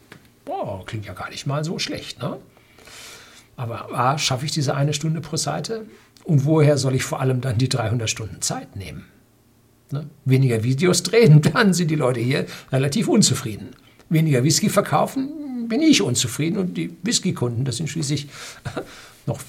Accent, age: German, 60-79